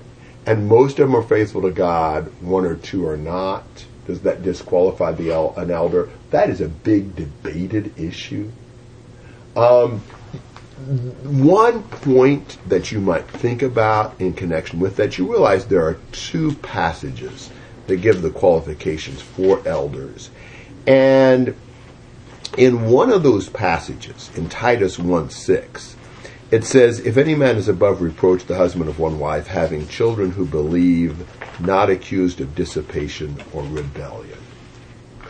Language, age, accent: English, 50-69, American